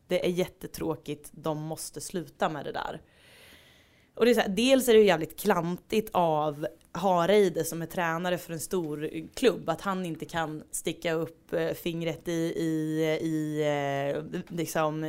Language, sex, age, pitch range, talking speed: Swedish, female, 20-39, 160-195 Hz, 155 wpm